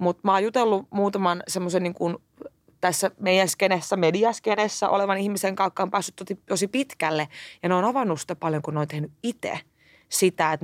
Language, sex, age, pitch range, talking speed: Finnish, female, 20-39, 170-225 Hz, 175 wpm